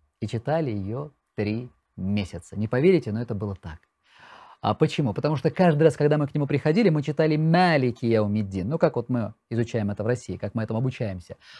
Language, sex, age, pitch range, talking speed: Russian, male, 30-49, 105-150 Hz, 195 wpm